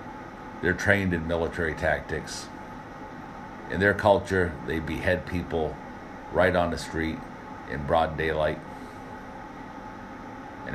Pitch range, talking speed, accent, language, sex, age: 80-95 Hz, 105 wpm, American, English, male, 60-79